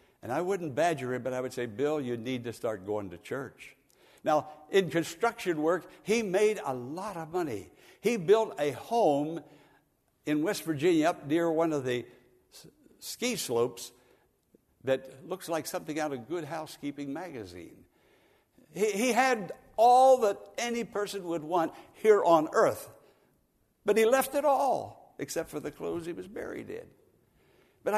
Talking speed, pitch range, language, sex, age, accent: 165 wpm, 120-190 Hz, English, male, 60-79, American